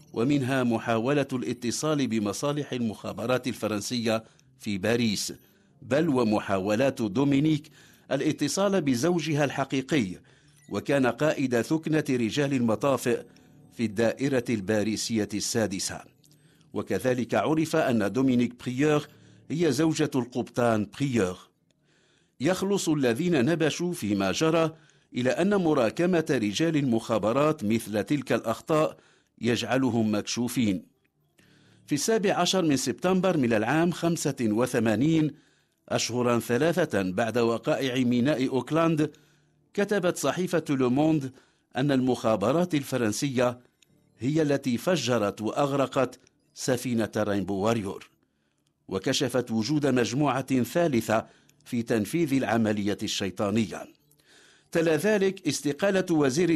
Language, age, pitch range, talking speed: English, 50-69, 115-155 Hz, 90 wpm